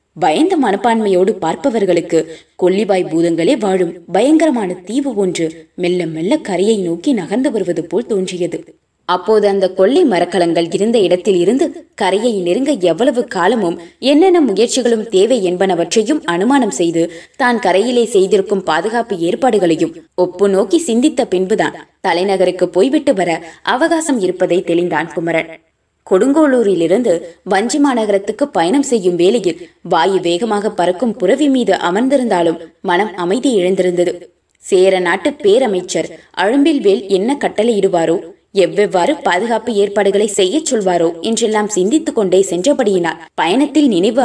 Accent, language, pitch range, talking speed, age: native, Tamil, 175-245 Hz, 110 wpm, 20-39